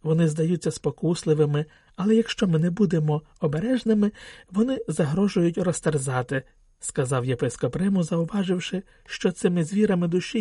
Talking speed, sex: 115 wpm, male